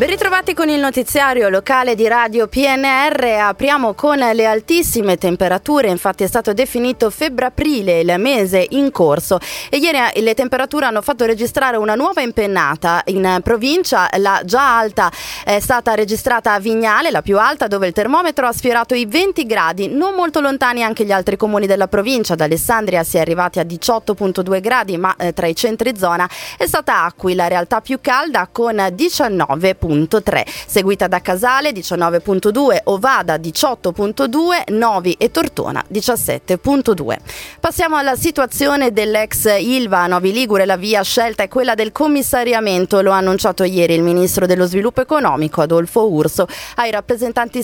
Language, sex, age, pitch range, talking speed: Italian, female, 20-39, 185-255 Hz, 155 wpm